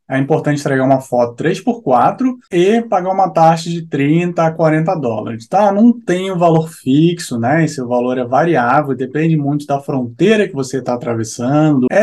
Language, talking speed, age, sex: Portuguese, 180 wpm, 20-39, male